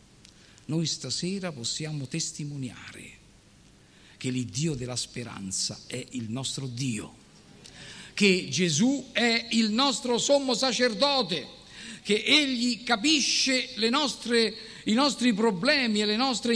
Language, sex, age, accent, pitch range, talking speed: Italian, male, 50-69, native, 145-235 Hz, 100 wpm